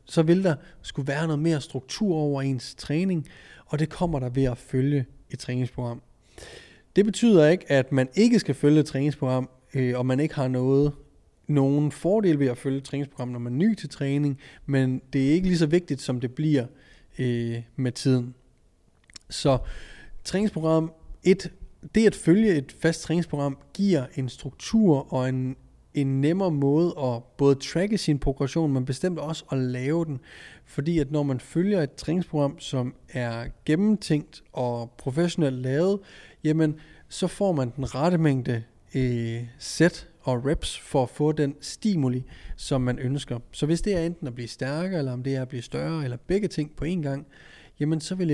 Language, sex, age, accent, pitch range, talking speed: Danish, male, 30-49, native, 130-160 Hz, 175 wpm